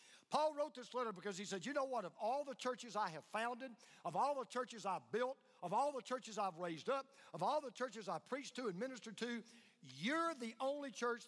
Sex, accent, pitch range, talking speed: male, American, 190-255 Hz, 235 wpm